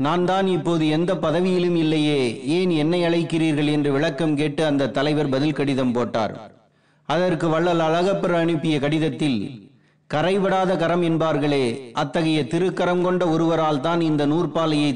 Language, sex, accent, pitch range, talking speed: Tamil, male, native, 150-180 Hz, 115 wpm